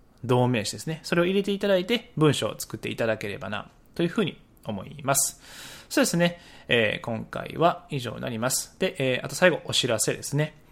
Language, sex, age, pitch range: Japanese, male, 20-39, 125-175 Hz